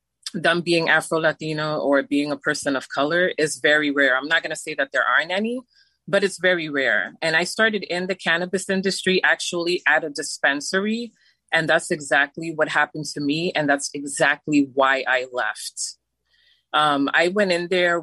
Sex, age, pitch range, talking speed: female, 30-49, 145-180 Hz, 180 wpm